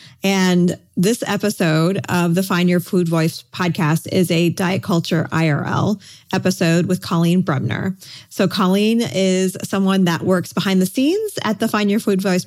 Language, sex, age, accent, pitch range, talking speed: English, female, 30-49, American, 170-205 Hz, 165 wpm